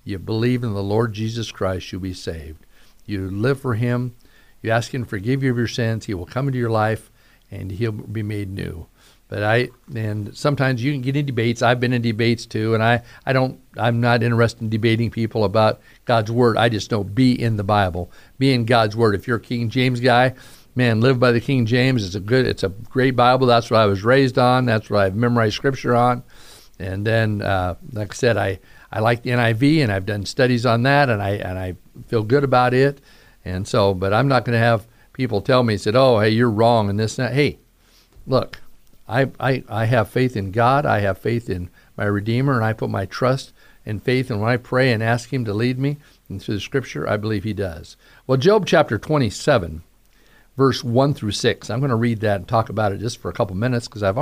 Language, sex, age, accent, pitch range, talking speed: English, male, 50-69, American, 105-125 Hz, 235 wpm